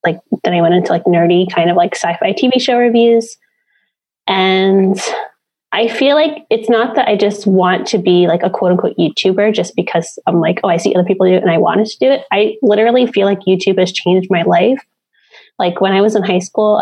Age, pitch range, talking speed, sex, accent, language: 20-39, 190-230 Hz, 225 wpm, female, American, English